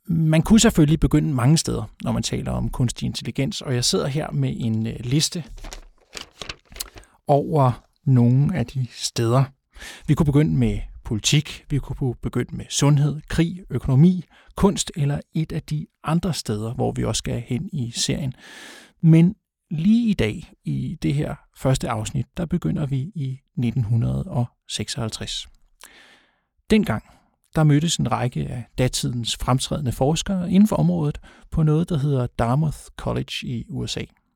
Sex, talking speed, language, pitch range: male, 145 wpm, Danish, 125-170 Hz